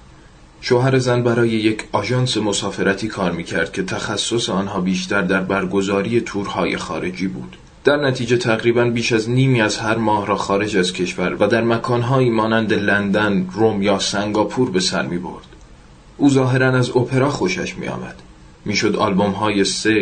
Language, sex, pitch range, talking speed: Persian, male, 95-115 Hz, 160 wpm